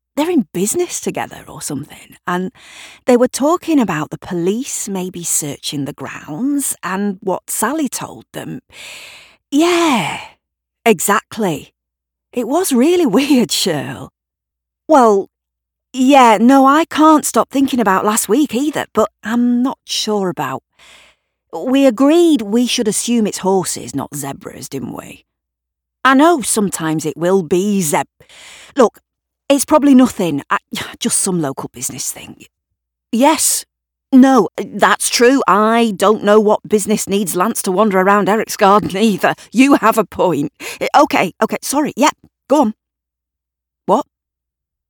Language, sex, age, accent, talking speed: English, female, 40-59, British, 135 wpm